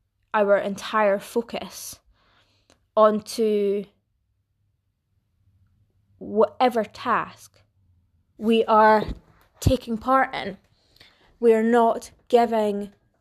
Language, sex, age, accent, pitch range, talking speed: English, female, 20-39, British, 205-245 Hz, 70 wpm